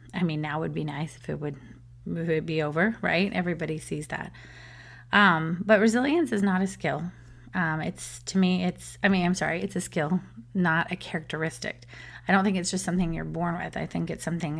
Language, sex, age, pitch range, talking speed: English, female, 30-49, 155-185 Hz, 210 wpm